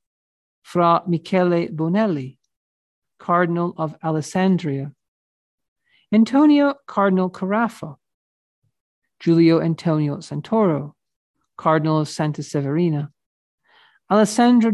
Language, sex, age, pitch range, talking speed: English, male, 50-69, 150-210 Hz, 70 wpm